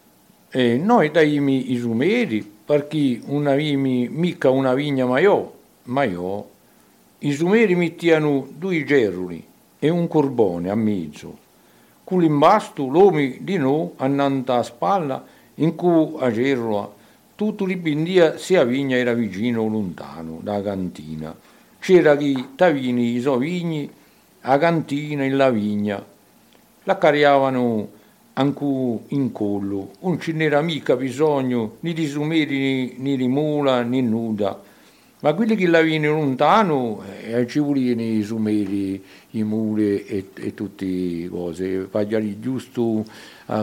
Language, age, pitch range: French, 60-79, 115-150 Hz